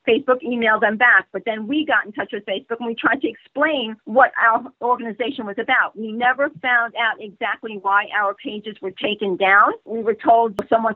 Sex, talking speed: female, 205 wpm